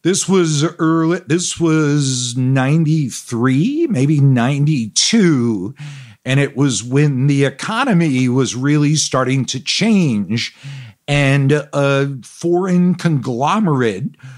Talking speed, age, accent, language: 95 wpm, 50-69, American, English